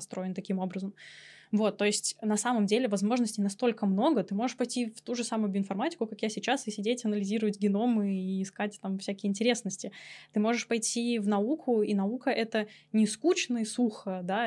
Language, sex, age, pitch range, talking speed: Russian, female, 10-29, 200-245 Hz, 185 wpm